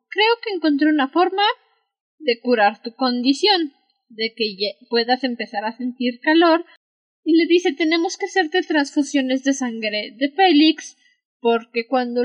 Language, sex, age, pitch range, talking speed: Spanish, female, 10-29, 255-330 Hz, 140 wpm